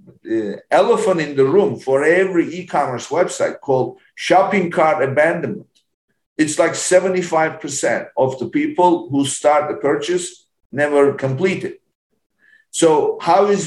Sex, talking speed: male, 125 wpm